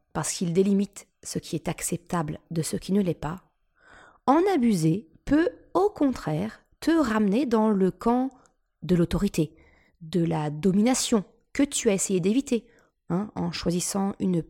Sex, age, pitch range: female, 20-39, 170-215 Hz